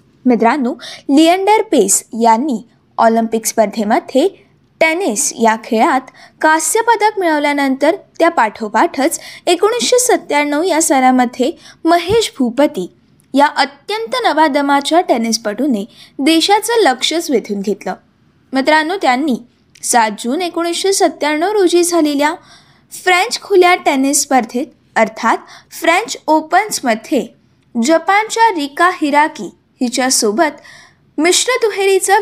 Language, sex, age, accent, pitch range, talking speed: Marathi, female, 20-39, native, 255-355 Hz, 90 wpm